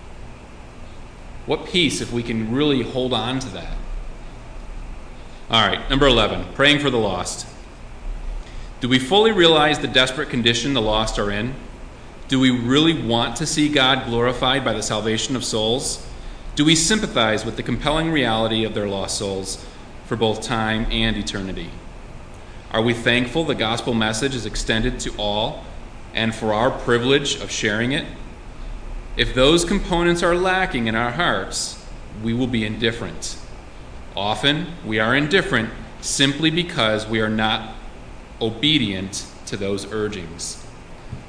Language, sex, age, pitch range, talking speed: English, male, 30-49, 105-140 Hz, 145 wpm